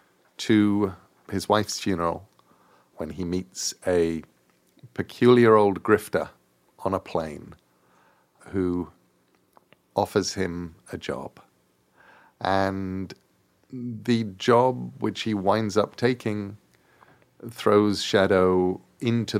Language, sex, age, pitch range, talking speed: English, male, 50-69, 90-110 Hz, 95 wpm